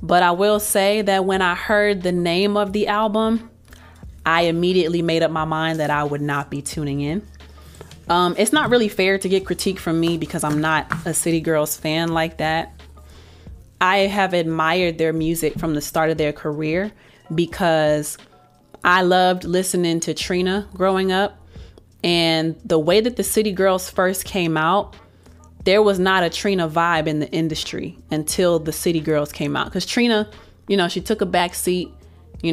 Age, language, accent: 20-39, English, American